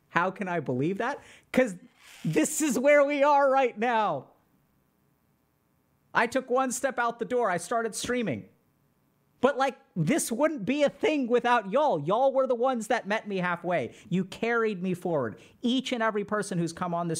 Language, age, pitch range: English, 40-59, 185-245 Hz